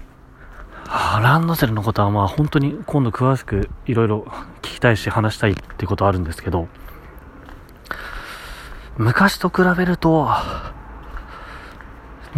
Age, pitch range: 30-49, 95-135 Hz